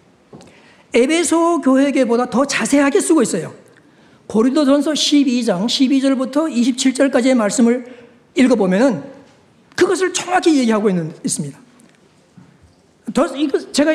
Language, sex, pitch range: Korean, male, 220-305 Hz